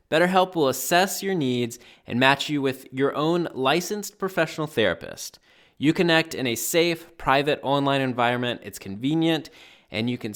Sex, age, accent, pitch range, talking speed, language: male, 20-39, American, 110-150 Hz, 155 wpm, English